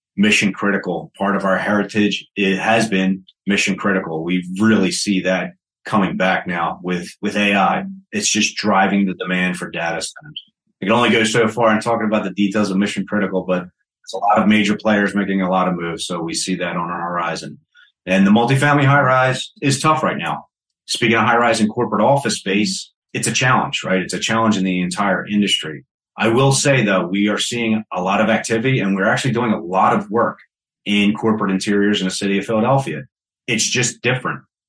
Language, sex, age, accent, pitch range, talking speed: English, male, 30-49, American, 95-110 Hz, 210 wpm